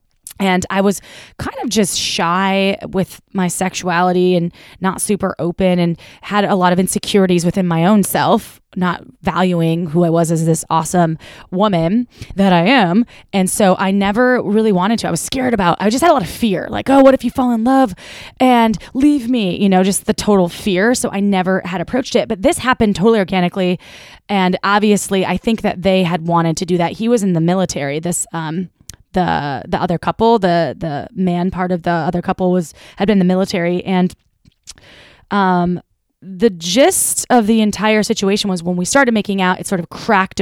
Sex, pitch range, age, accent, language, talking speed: female, 180-215 Hz, 20-39, American, English, 200 wpm